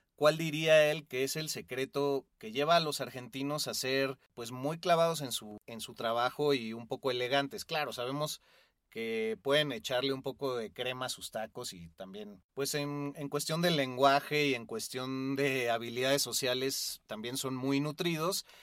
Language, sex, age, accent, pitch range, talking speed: Spanish, male, 30-49, Mexican, 115-145 Hz, 180 wpm